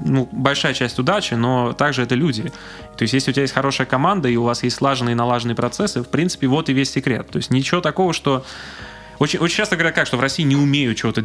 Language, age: Russian, 20-39